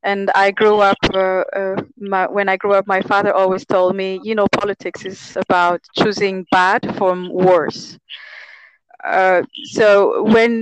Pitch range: 185-215 Hz